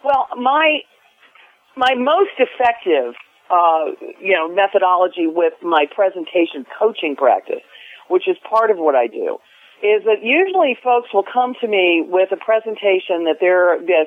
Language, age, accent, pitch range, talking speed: English, 40-59, American, 175-245 Hz, 150 wpm